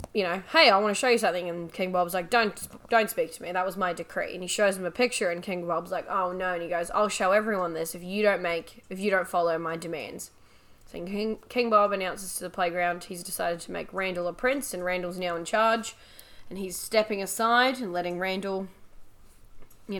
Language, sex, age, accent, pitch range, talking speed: English, female, 10-29, Australian, 180-210 Hz, 235 wpm